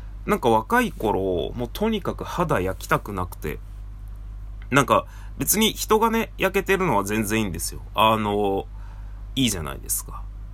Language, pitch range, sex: Japanese, 100-140 Hz, male